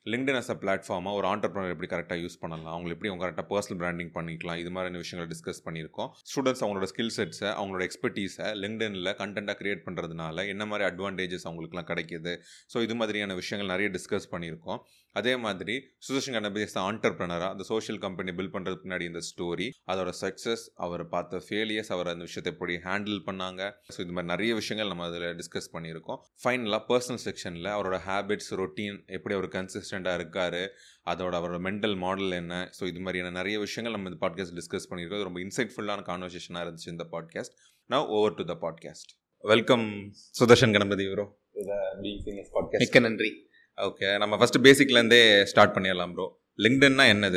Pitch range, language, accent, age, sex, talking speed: 90-110 Hz, Tamil, native, 30-49, male, 150 wpm